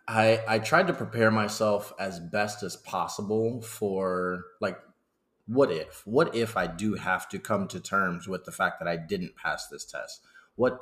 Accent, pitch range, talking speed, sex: American, 90-110 Hz, 185 wpm, male